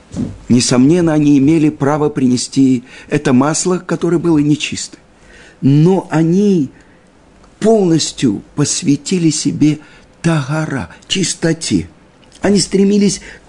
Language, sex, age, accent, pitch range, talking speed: Russian, male, 50-69, native, 125-165 Hz, 85 wpm